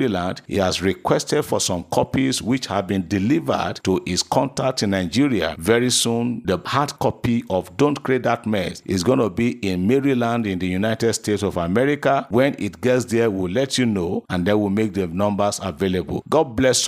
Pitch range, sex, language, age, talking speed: 100-130 Hz, male, English, 50-69, 195 wpm